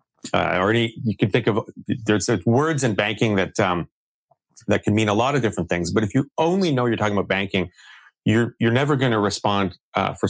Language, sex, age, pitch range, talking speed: English, male, 30-49, 95-115 Hz, 220 wpm